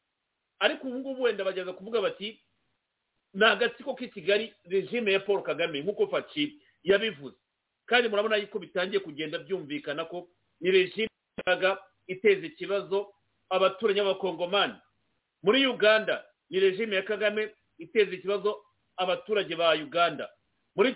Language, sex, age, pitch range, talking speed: English, male, 50-69, 185-230 Hz, 120 wpm